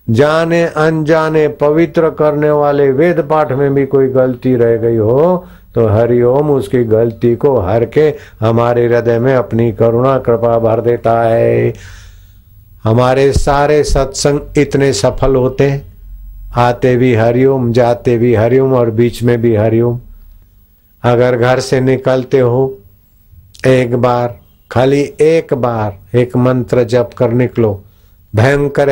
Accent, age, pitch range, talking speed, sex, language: native, 50-69, 100-130 Hz, 135 wpm, male, Hindi